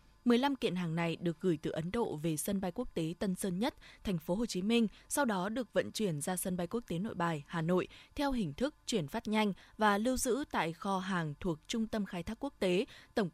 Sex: female